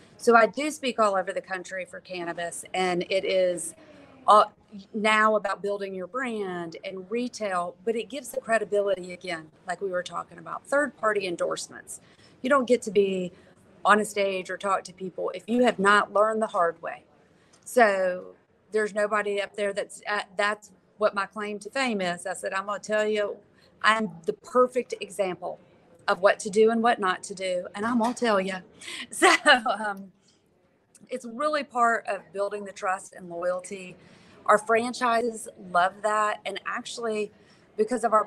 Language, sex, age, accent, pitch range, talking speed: English, female, 40-59, American, 185-225 Hz, 175 wpm